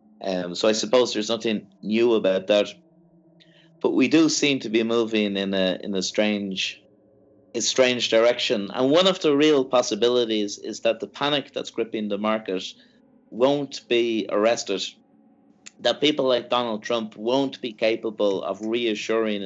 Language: English